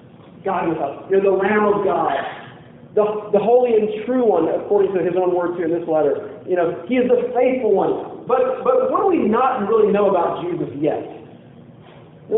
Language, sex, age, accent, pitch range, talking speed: English, male, 40-59, American, 200-300 Hz, 205 wpm